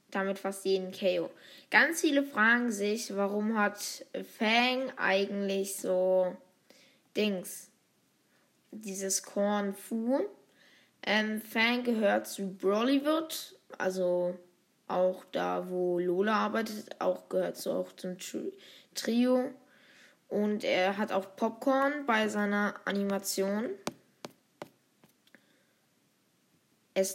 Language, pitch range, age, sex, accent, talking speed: German, 185-240 Hz, 20-39, female, German, 95 wpm